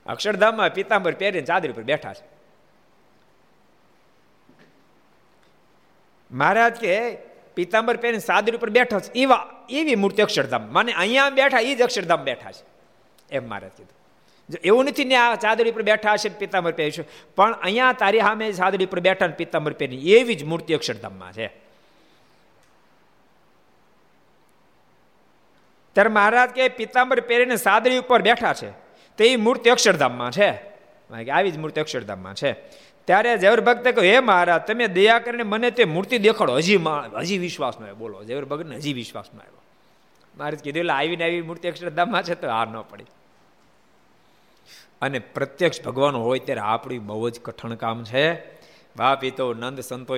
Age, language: 50-69, Gujarati